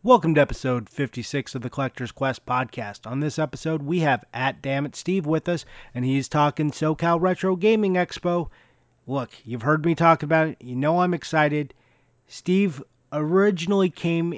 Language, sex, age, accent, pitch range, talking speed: English, male, 30-49, American, 125-165 Hz, 165 wpm